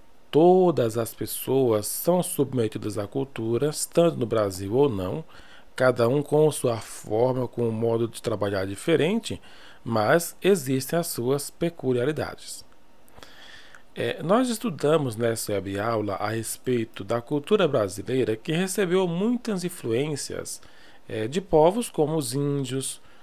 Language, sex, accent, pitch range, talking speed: Portuguese, male, Brazilian, 115-155 Hz, 125 wpm